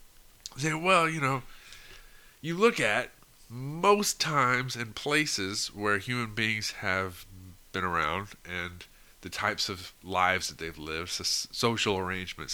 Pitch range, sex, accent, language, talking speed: 95-125 Hz, male, American, English, 125 wpm